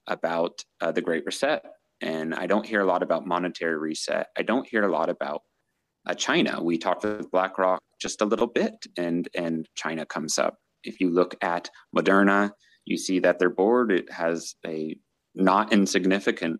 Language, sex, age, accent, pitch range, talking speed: English, male, 30-49, American, 85-105 Hz, 180 wpm